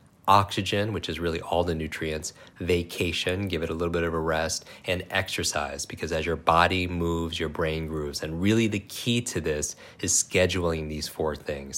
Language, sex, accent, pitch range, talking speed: English, male, American, 80-95 Hz, 190 wpm